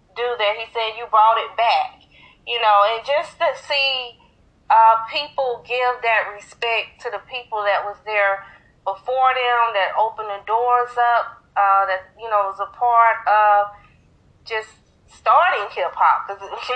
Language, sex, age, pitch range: English, female, 30-49, 200-245 Hz